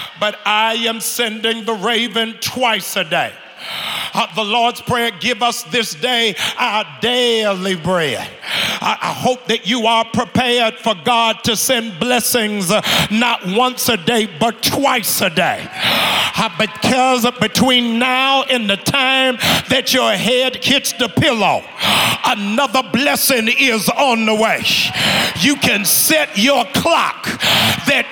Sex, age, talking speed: male, 50-69, 140 wpm